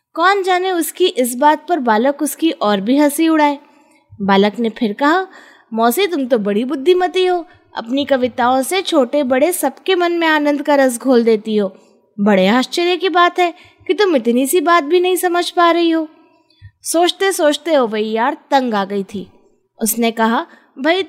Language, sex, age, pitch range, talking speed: Hindi, female, 20-39, 235-330 Hz, 185 wpm